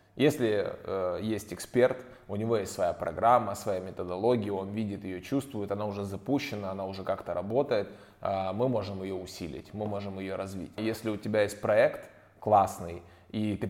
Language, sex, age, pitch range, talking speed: Russian, male, 20-39, 95-110 Hz, 170 wpm